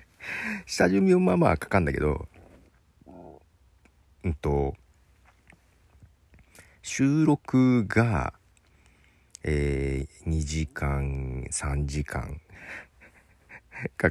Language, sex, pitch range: Japanese, male, 75-100 Hz